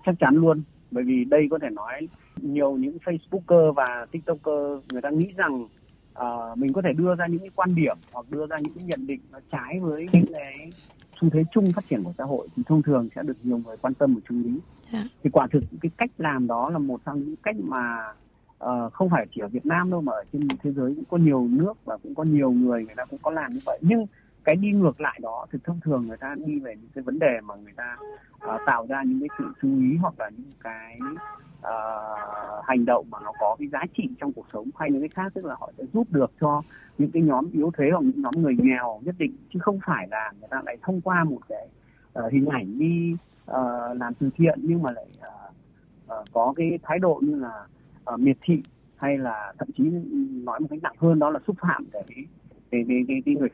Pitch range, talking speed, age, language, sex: 130-200 Hz, 235 wpm, 30-49, Vietnamese, male